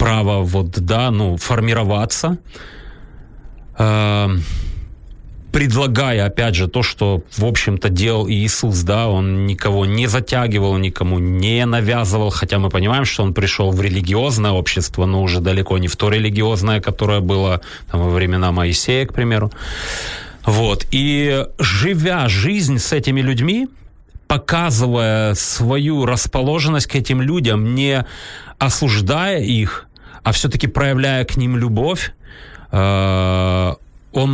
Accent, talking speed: native, 120 wpm